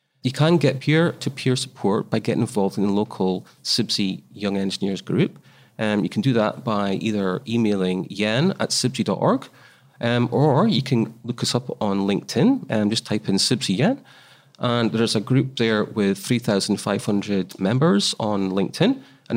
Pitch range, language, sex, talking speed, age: 105-135 Hz, English, male, 160 wpm, 30-49